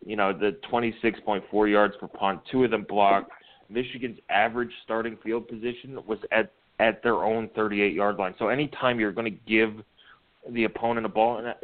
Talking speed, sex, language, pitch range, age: 175 wpm, male, English, 100-115 Hz, 20-39